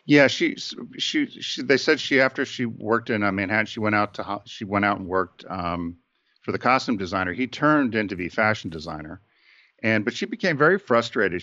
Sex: male